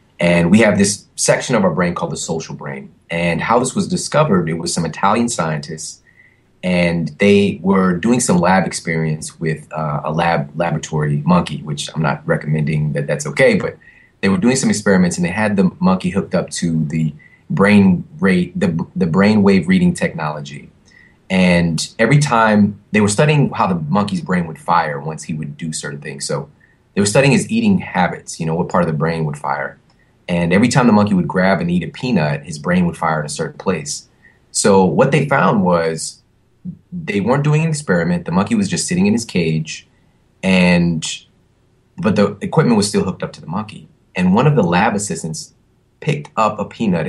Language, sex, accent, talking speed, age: English, male, American, 200 wpm, 30-49